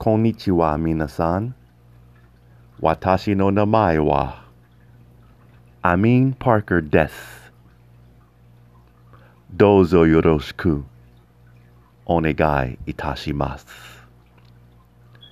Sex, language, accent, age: male, English, American, 50-69